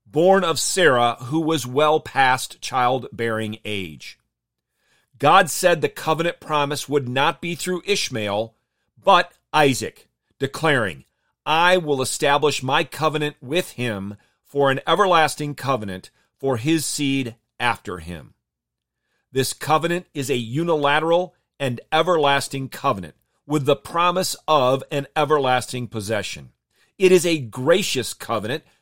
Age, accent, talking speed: 40-59, American, 120 wpm